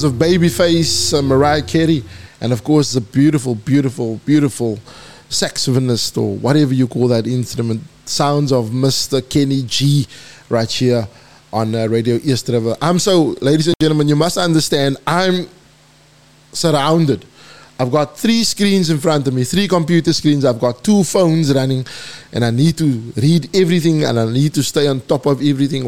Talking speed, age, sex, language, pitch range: 165 wpm, 20-39, male, English, 125-160 Hz